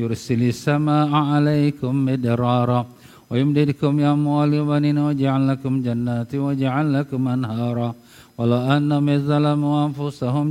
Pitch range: 125-145 Hz